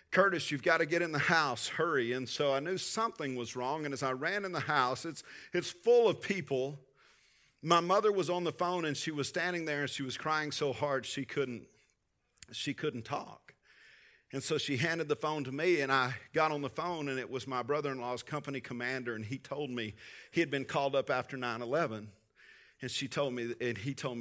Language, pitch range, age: English, 125-155 Hz, 50-69